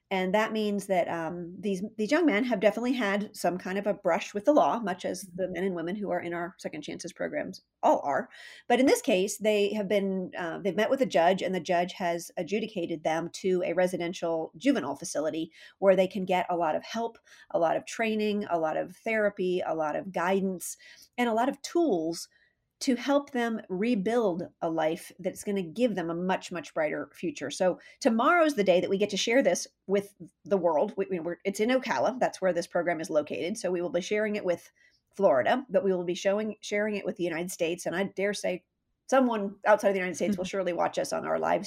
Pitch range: 180-225 Hz